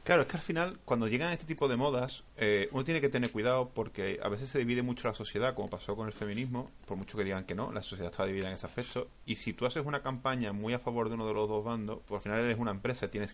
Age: 30-49